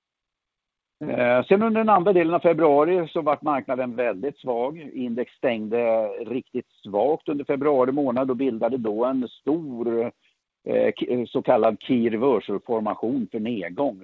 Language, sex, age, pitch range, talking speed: Swedish, male, 60-79, 115-150 Hz, 130 wpm